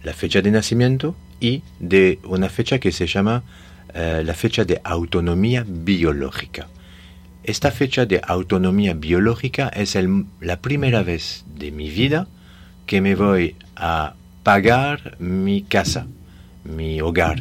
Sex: male